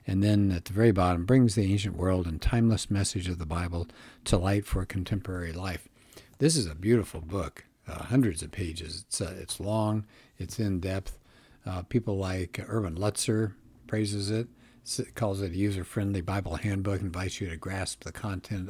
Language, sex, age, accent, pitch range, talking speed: English, male, 60-79, American, 90-110 Hz, 175 wpm